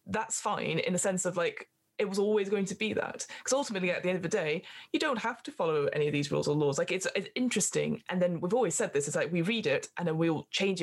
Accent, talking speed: British, 290 wpm